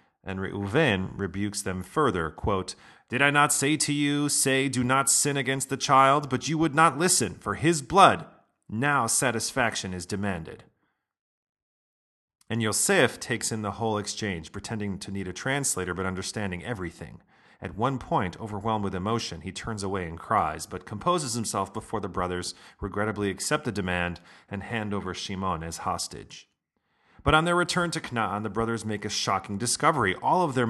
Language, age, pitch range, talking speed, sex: English, 40-59, 100-140 Hz, 170 wpm, male